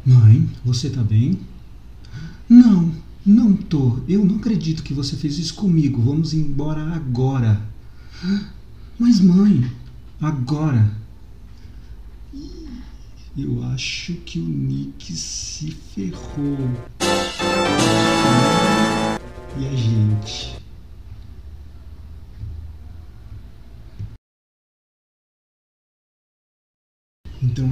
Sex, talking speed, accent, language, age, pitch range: male, 70 wpm, Brazilian, Portuguese, 50-69, 105-135 Hz